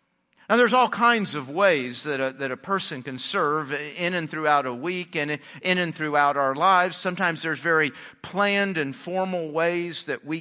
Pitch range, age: 155-210 Hz, 50-69